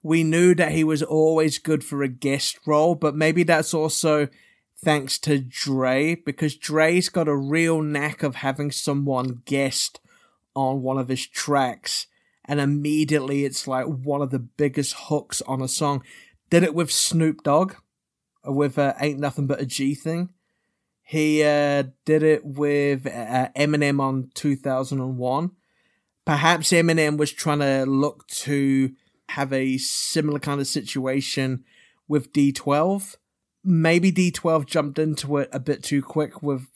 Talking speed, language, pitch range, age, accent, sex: 150 wpm, English, 135-160 Hz, 30-49, British, male